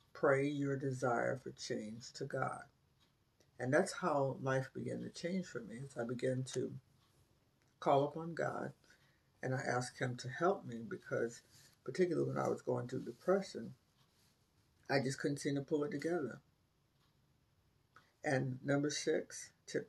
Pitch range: 125-150 Hz